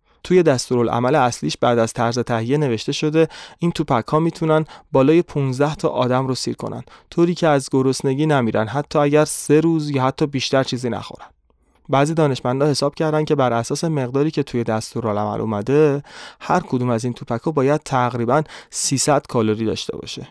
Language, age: Persian, 30-49